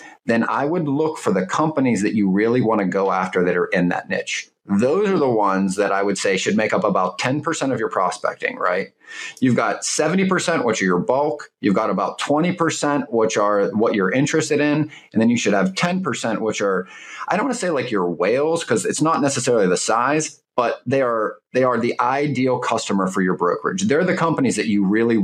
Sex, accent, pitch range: male, American, 105-155 Hz